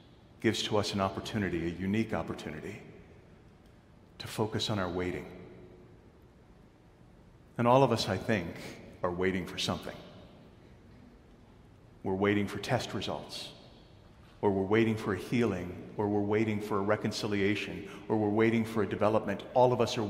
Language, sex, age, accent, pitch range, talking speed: English, male, 40-59, American, 100-125 Hz, 150 wpm